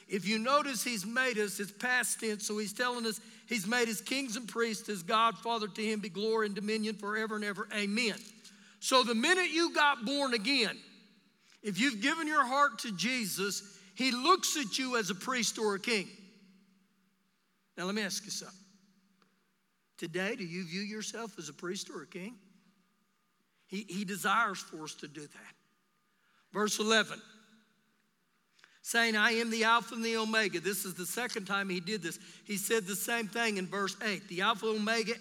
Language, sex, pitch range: English, male, 200-245 Hz